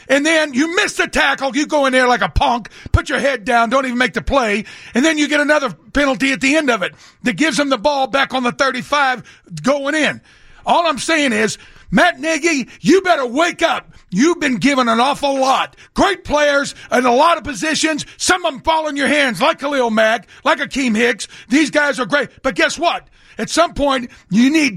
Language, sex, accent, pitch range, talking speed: English, male, American, 245-310 Hz, 225 wpm